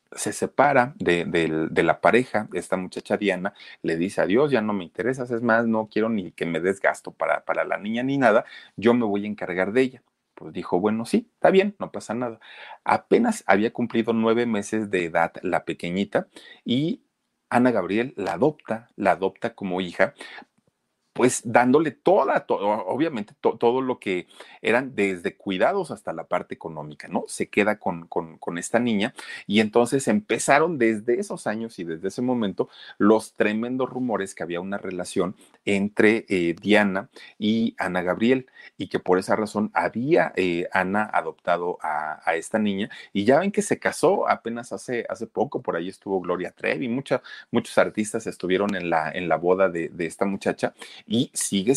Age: 40-59